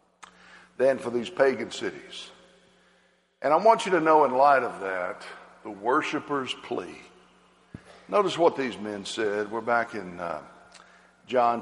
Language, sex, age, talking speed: English, male, 60-79, 145 wpm